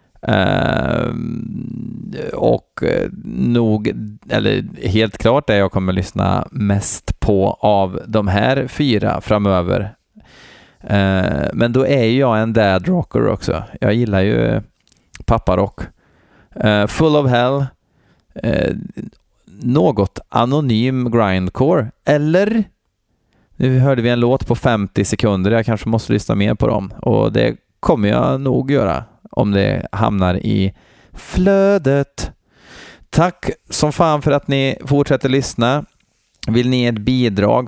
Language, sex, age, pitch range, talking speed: Swedish, male, 30-49, 100-125 Hz, 125 wpm